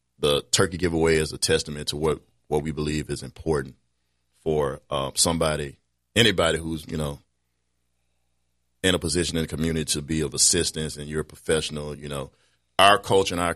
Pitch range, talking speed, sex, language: 75-85 Hz, 175 wpm, male, English